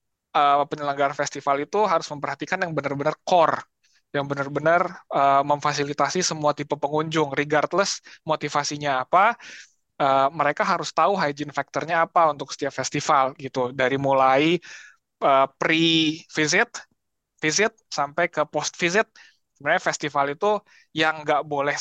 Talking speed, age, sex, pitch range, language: 125 wpm, 20-39, male, 135-155 Hz, Indonesian